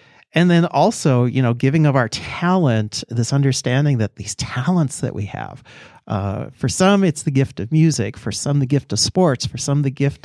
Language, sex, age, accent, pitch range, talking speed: English, male, 40-59, American, 110-145 Hz, 205 wpm